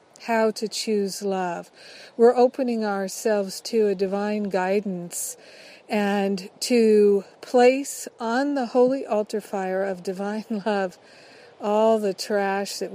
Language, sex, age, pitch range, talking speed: English, female, 50-69, 200-230 Hz, 120 wpm